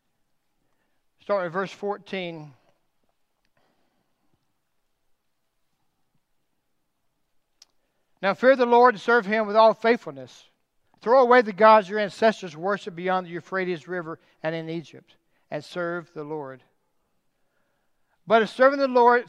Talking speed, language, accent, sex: 115 wpm, English, American, male